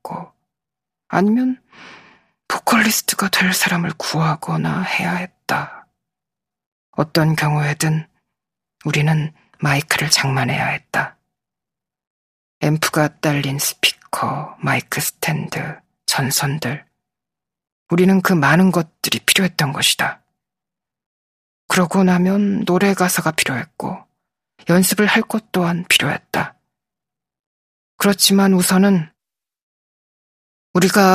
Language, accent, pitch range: Korean, native, 155-185 Hz